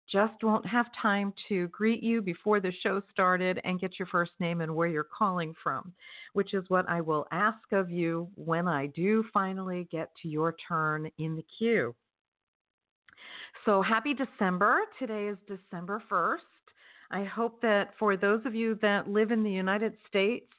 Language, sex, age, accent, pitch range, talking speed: English, female, 50-69, American, 180-225 Hz, 175 wpm